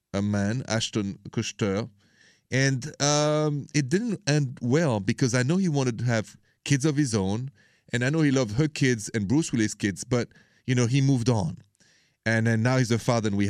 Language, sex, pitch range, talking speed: English, male, 110-140 Hz, 205 wpm